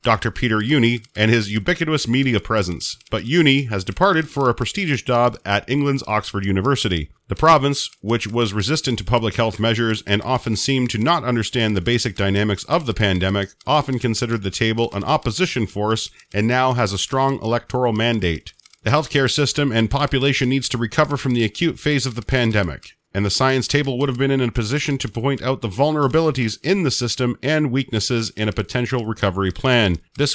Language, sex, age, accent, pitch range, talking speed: English, male, 40-59, American, 115-150 Hz, 190 wpm